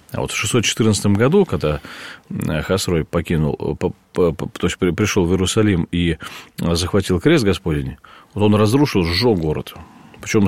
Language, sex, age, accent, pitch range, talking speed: Russian, male, 40-59, native, 80-105 Hz, 120 wpm